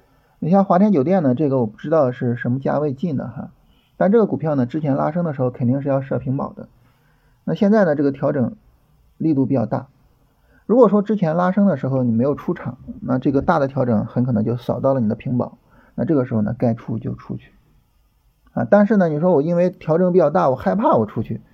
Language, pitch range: Chinese, 120-180 Hz